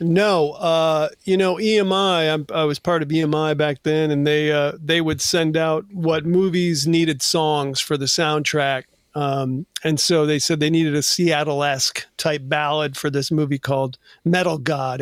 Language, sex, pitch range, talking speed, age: English, male, 150-180 Hz, 180 wpm, 40-59